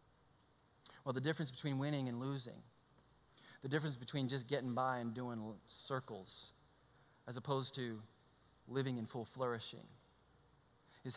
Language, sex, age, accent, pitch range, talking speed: English, male, 30-49, American, 130-210 Hz, 130 wpm